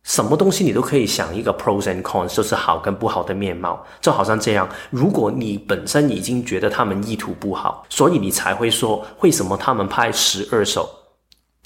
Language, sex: Chinese, male